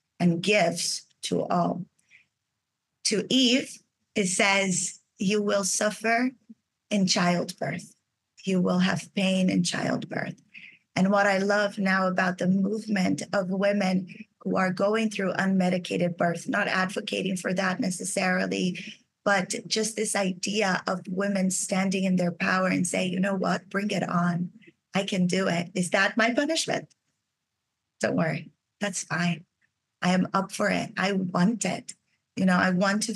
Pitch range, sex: 185-215 Hz, female